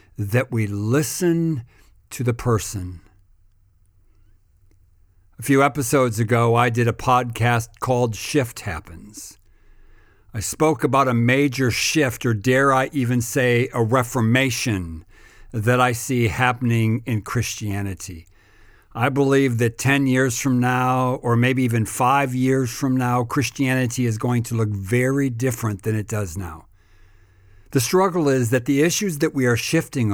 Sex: male